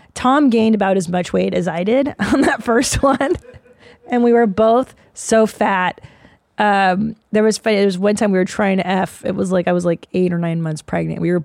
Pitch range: 180-235 Hz